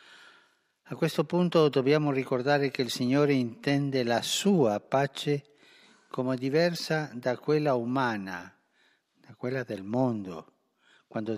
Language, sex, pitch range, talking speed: Italian, male, 115-150 Hz, 115 wpm